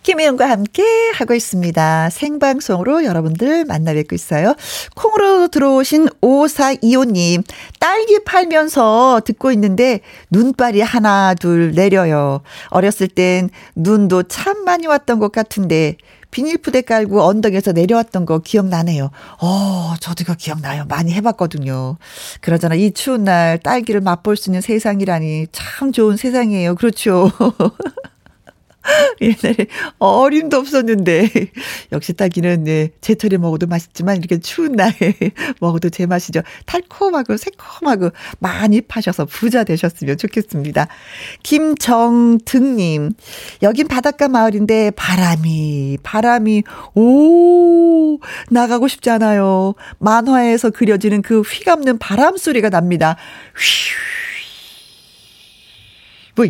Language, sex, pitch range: Korean, female, 180-265 Hz